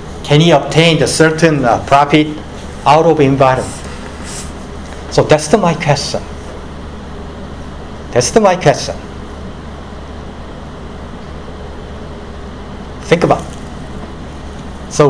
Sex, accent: male, Japanese